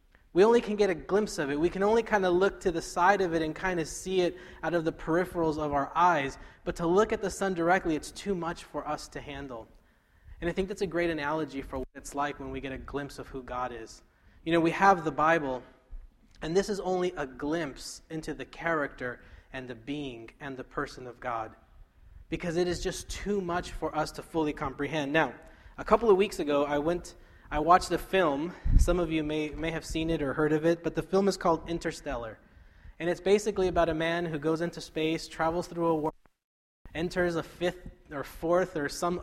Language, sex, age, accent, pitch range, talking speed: English, male, 20-39, American, 140-175 Hz, 230 wpm